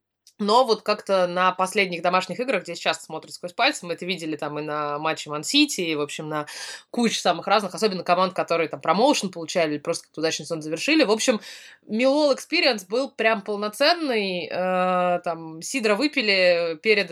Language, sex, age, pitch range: Russian, female, 20-39, 175-215 Hz